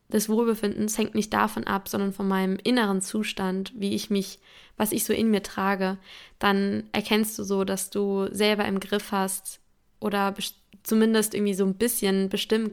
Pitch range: 195-220 Hz